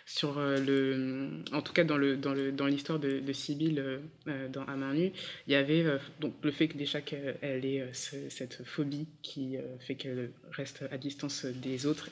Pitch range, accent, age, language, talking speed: 140-155 Hz, French, 20-39, French, 205 wpm